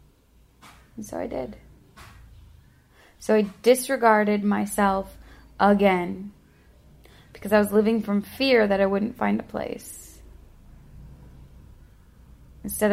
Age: 20-39